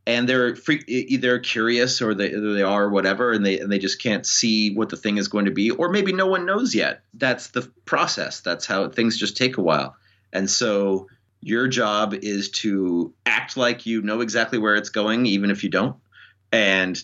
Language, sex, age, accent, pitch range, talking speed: English, male, 30-49, American, 95-120 Hz, 210 wpm